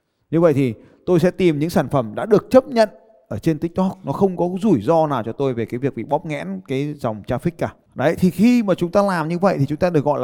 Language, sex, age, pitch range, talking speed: Vietnamese, male, 20-39, 125-175 Hz, 280 wpm